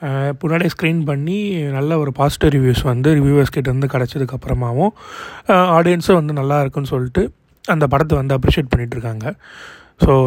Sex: male